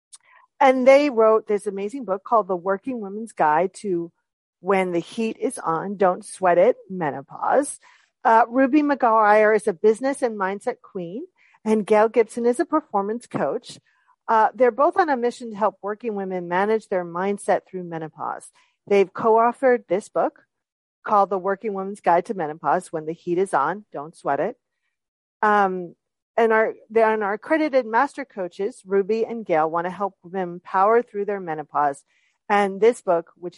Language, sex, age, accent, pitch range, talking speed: English, female, 40-59, American, 185-240 Hz, 170 wpm